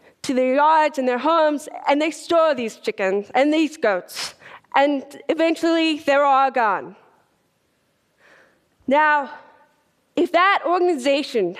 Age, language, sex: 20-39, Korean, female